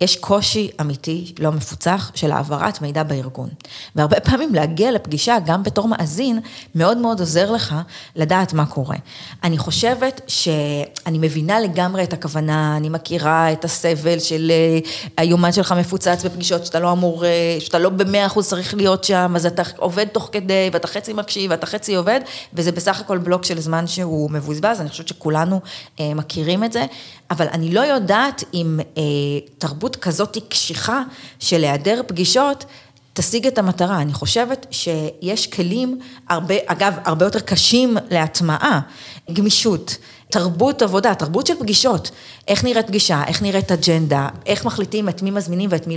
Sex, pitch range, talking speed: female, 160-210 Hz, 145 wpm